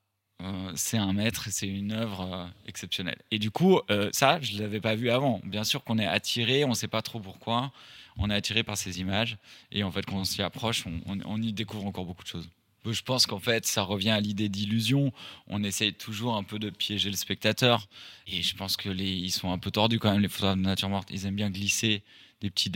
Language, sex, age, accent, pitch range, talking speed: French, male, 20-39, French, 95-110 Hz, 245 wpm